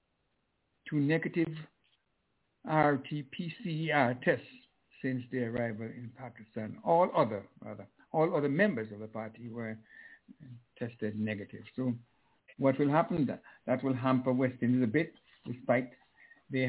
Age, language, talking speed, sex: 60-79, English, 125 wpm, male